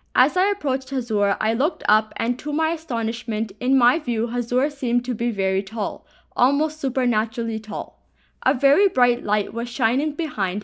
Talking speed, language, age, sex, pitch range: 170 wpm, English, 20-39, female, 220-285 Hz